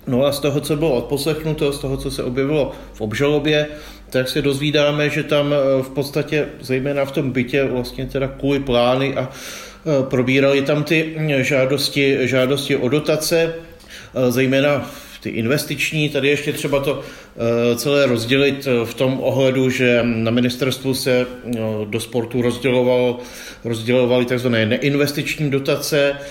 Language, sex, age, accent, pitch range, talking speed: Czech, male, 40-59, native, 120-140 Hz, 135 wpm